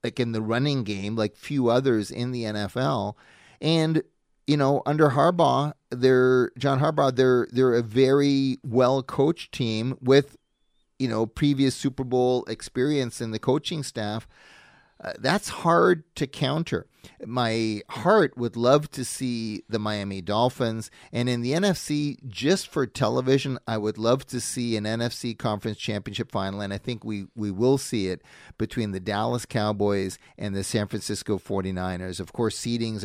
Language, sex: English, male